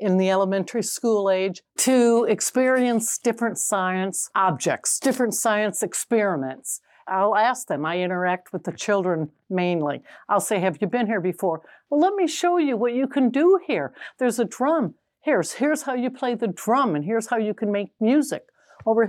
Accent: American